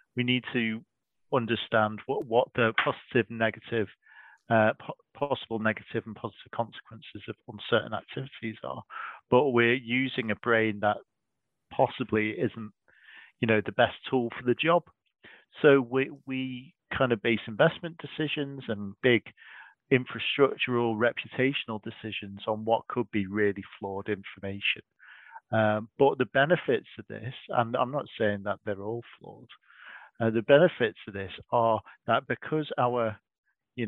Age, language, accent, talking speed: 40-59, English, British, 140 wpm